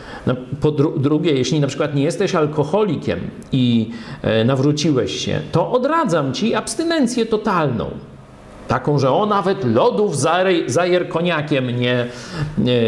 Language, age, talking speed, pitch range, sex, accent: Polish, 50-69, 120 wpm, 130-195 Hz, male, native